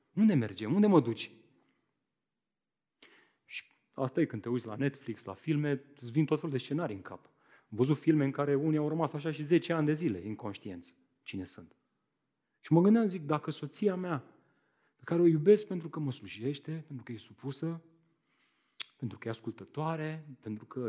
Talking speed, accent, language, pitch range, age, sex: 185 wpm, native, Romanian, 115-180 Hz, 30-49, male